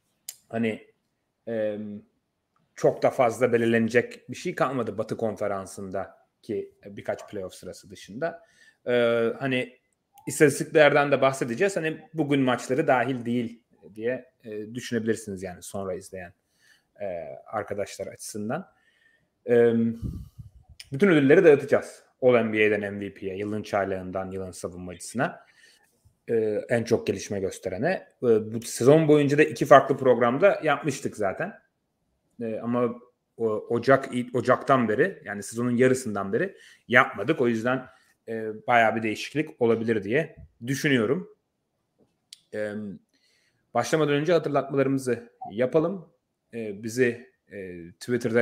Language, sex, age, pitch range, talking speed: Turkish, male, 30-49, 110-140 Hz, 95 wpm